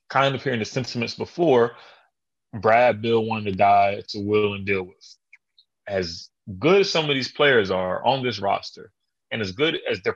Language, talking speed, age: English, 190 wpm, 30-49